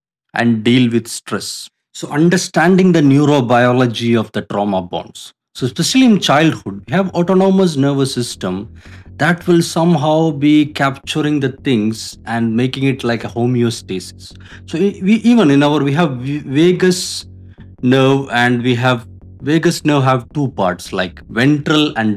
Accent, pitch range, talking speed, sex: Indian, 115-160 Hz, 150 wpm, male